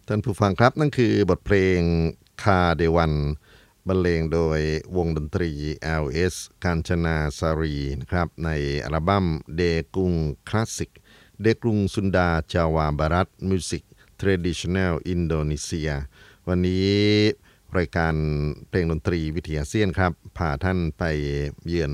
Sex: male